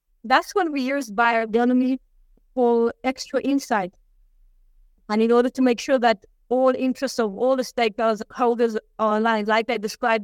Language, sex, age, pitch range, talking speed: English, female, 30-49, 235-270 Hz, 150 wpm